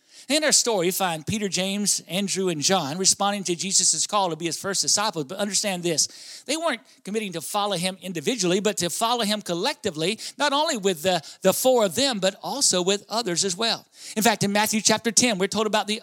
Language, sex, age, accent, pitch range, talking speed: English, male, 50-69, American, 175-225 Hz, 215 wpm